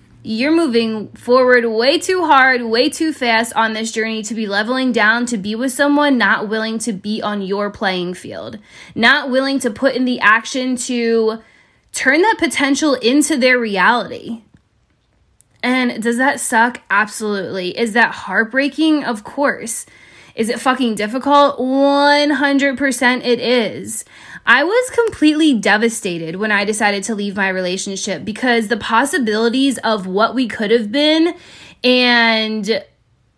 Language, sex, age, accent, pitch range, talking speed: English, female, 10-29, American, 220-270 Hz, 145 wpm